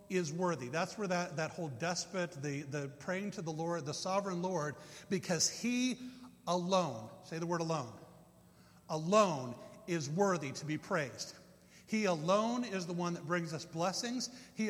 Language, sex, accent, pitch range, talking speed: English, male, American, 150-185 Hz, 165 wpm